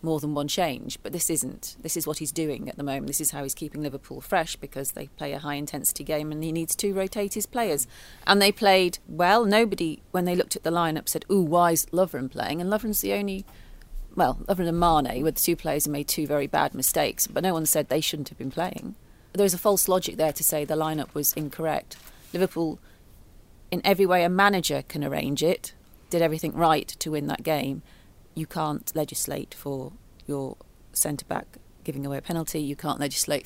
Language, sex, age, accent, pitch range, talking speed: English, female, 40-59, British, 145-180 Hz, 215 wpm